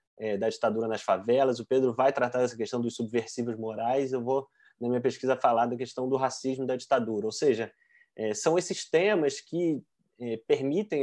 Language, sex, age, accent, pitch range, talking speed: Portuguese, male, 20-39, Brazilian, 115-140 Hz, 190 wpm